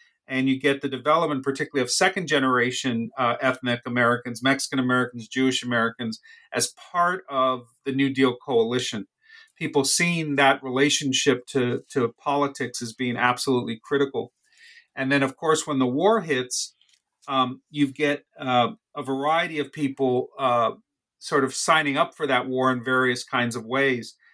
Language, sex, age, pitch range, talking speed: English, male, 40-59, 125-150 Hz, 155 wpm